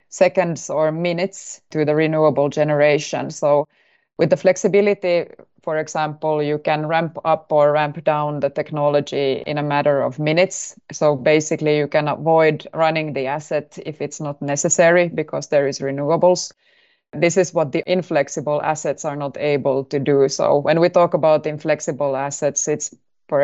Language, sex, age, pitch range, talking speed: English, female, 20-39, 145-160 Hz, 160 wpm